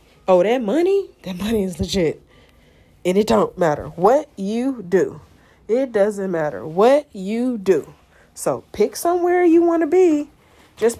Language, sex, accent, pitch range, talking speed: English, female, American, 190-275 Hz, 155 wpm